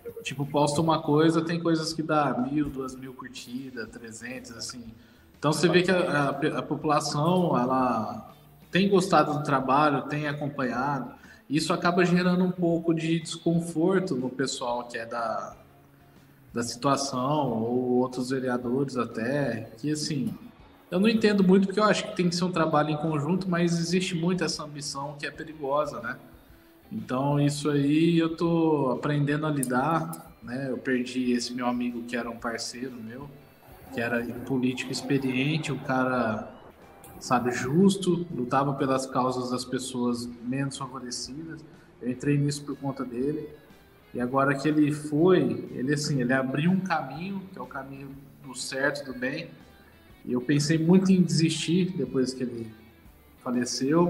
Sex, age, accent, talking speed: male, 20-39, Brazilian, 155 wpm